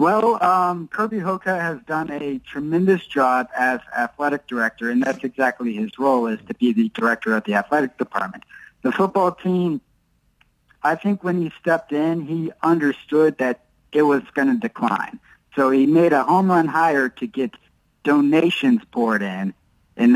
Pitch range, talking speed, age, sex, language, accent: 130-175 Hz, 165 wpm, 50-69, male, English, American